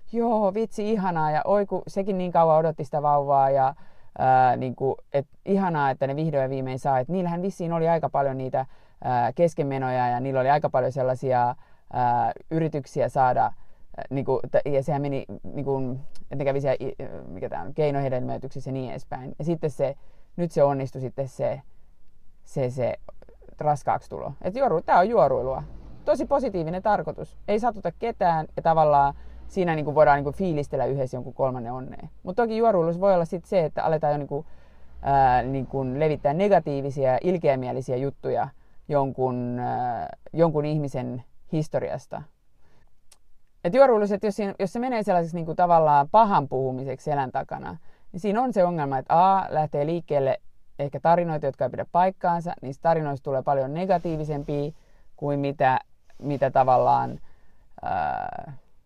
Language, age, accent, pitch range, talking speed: Finnish, 30-49, native, 135-175 Hz, 160 wpm